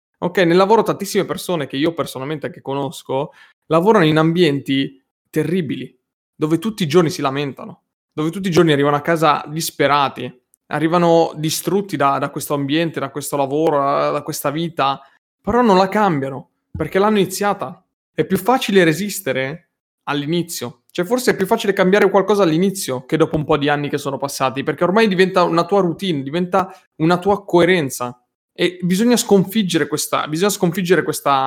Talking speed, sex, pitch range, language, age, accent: 165 wpm, male, 140-180 Hz, Italian, 30-49, native